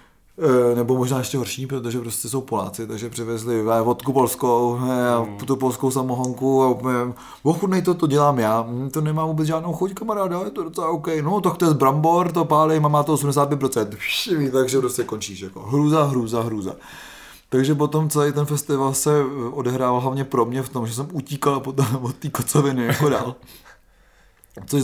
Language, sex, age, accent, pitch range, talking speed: Czech, male, 20-39, native, 120-140 Hz, 185 wpm